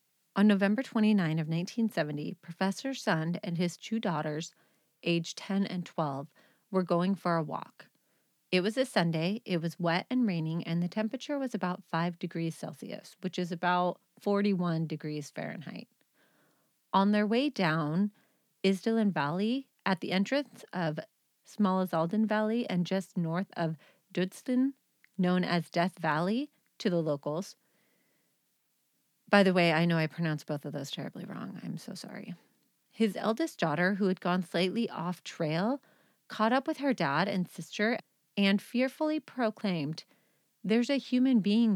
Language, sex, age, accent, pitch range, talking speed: English, female, 30-49, American, 170-220 Hz, 150 wpm